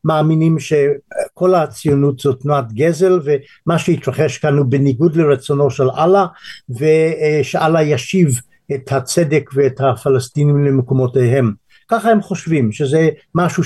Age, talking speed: 60-79, 115 wpm